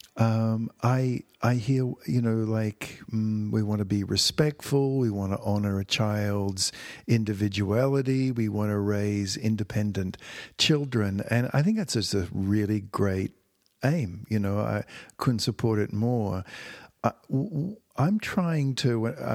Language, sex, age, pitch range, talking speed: English, male, 50-69, 105-125 Hz, 145 wpm